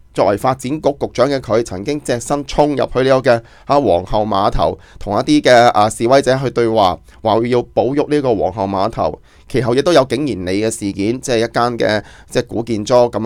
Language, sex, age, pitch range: Chinese, male, 20-39, 100-130 Hz